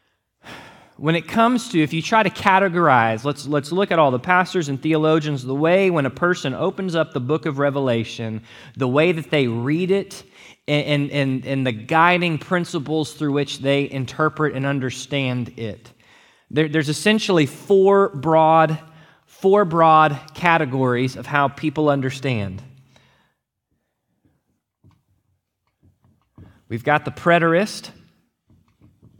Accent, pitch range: American, 120-155 Hz